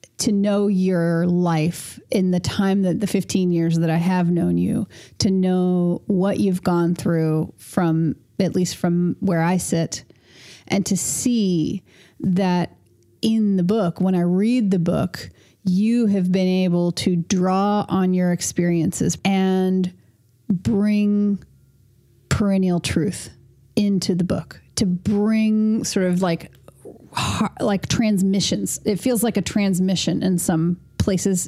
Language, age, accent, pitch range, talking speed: English, 30-49, American, 170-200 Hz, 135 wpm